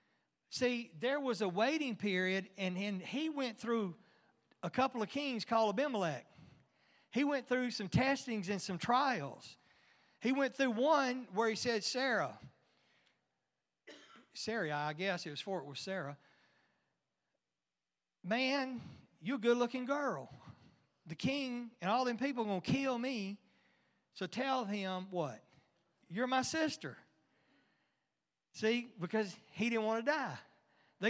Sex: male